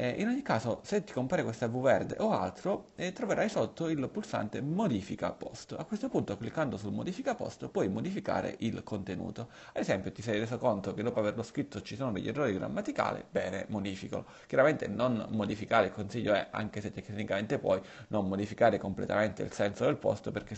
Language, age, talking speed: Italian, 30-49, 185 wpm